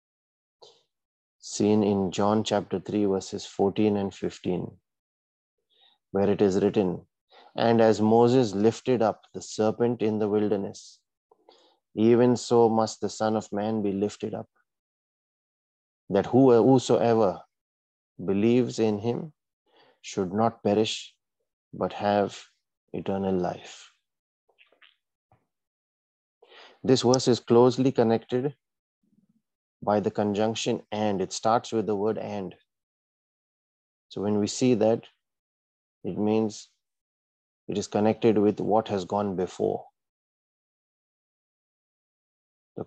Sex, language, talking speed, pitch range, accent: male, English, 105 wpm, 100-115 Hz, Indian